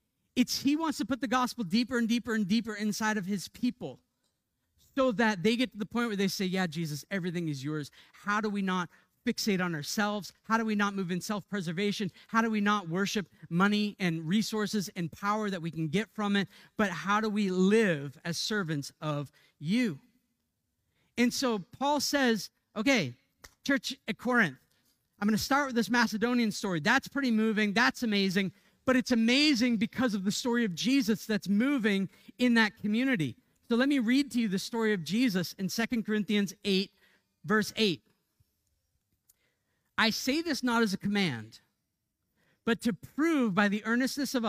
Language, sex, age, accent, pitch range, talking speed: English, male, 40-59, American, 190-240 Hz, 185 wpm